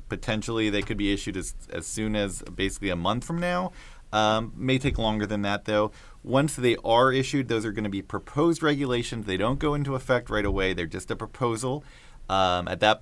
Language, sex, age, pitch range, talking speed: English, male, 30-49, 100-125 Hz, 210 wpm